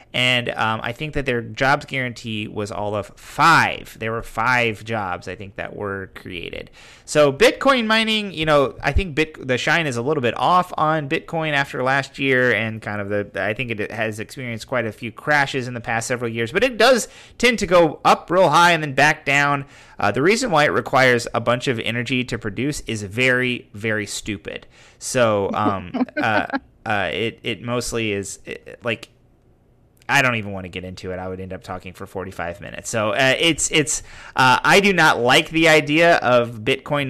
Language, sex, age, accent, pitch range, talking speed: English, male, 30-49, American, 110-145 Hz, 200 wpm